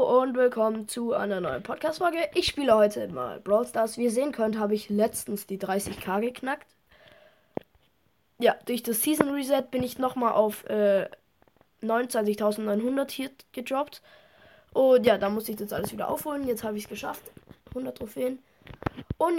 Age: 20-39